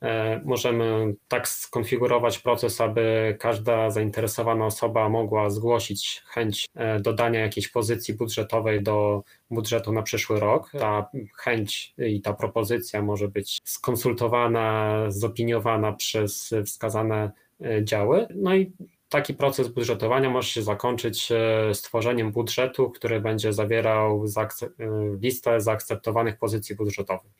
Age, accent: 20-39, native